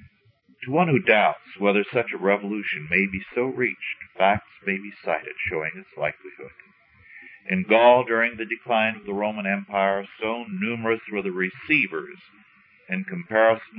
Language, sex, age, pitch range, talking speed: English, male, 50-69, 100-125 Hz, 150 wpm